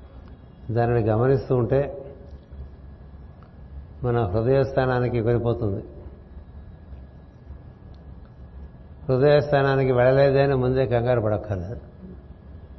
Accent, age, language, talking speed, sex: native, 60-79, Telugu, 50 wpm, male